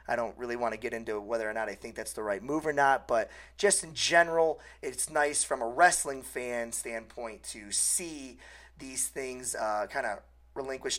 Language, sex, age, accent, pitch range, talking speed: English, male, 30-49, American, 115-175 Hz, 195 wpm